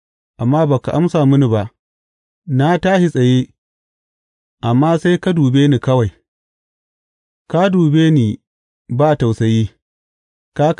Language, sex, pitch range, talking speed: English, male, 110-155 Hz, 105 wpm